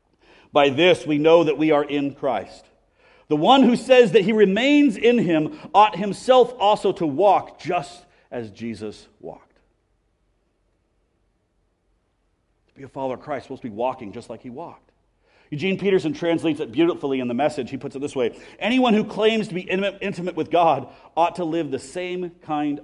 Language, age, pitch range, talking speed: English, 40-59, 165-245 Hz, 185 wpm